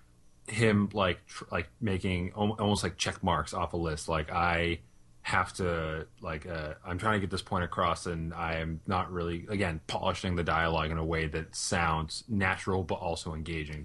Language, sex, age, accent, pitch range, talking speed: English, male, 30-49, American, 80-105 Hz, 185 wpm